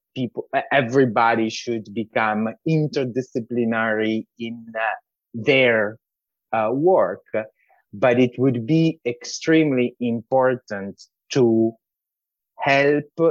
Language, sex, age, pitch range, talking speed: English, male, 30-49, 115-155 Hz, 80 wpm